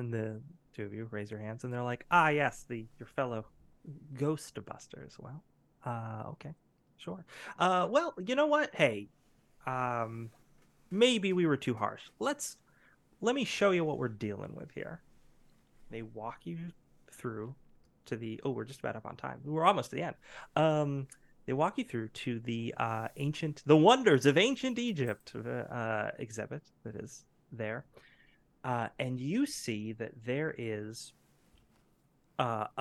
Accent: American